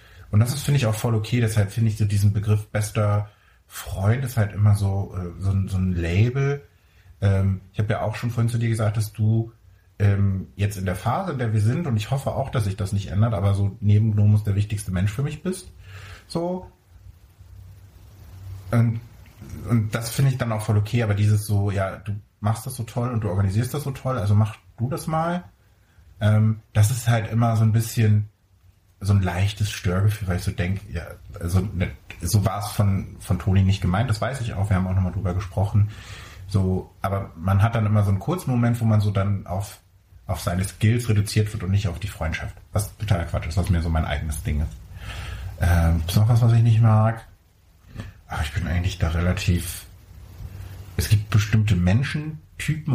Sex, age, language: male, 30-49, German